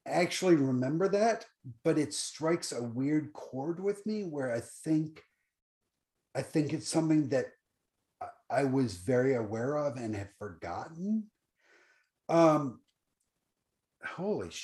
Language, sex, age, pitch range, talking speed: English, male, 50-69, 125-160 Hz, 120 wpm